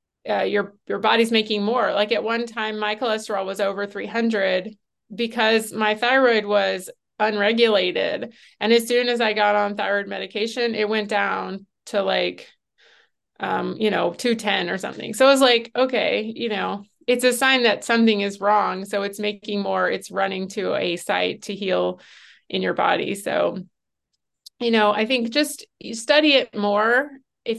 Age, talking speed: 30-49, 170 wpm